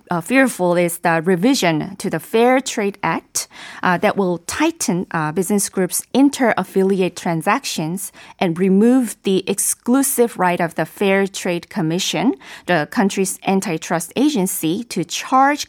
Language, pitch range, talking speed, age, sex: English, 175-240 Hz, 135 wpm, 20-39, female